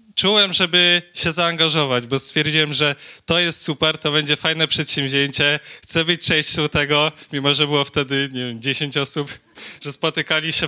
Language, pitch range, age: Polish, 135-160 Hz, 20-39